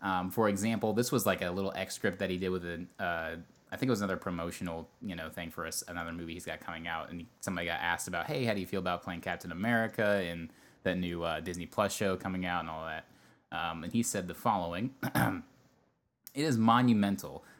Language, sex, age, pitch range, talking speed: English, male, 20-39, 90-110 Hz, 230 wpm